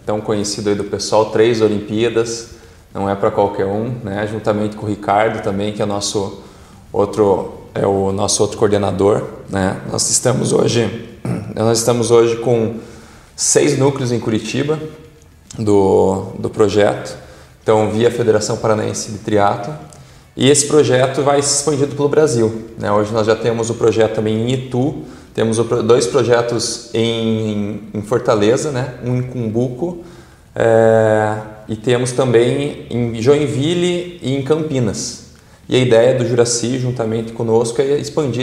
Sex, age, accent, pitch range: male, 20-39, Brazilian, 110-130 Hz